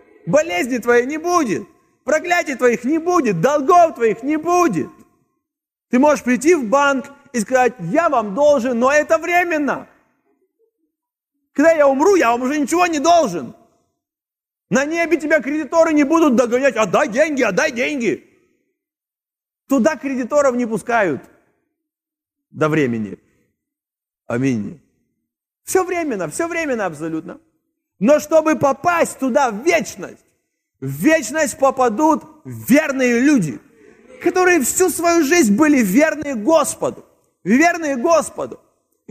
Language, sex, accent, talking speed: Russian, male, native, 120 wpm